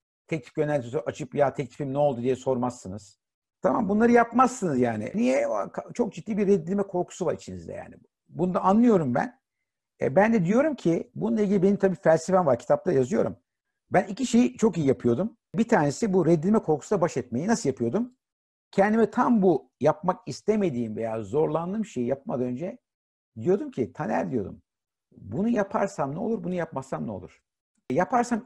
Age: 60-79